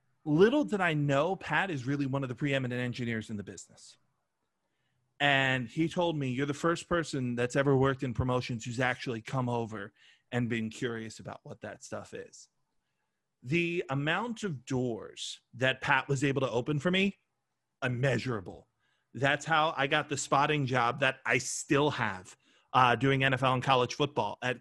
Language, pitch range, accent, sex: English, 125-145 Hz, American, male